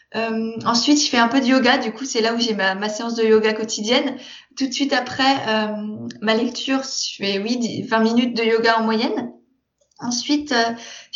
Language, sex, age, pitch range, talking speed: French, female, 20-39, 220-255 Hz, 205 wpm